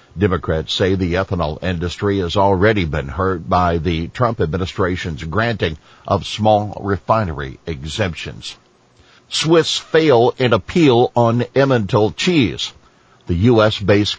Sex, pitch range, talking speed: male, 90-115 Hz, 115 wpm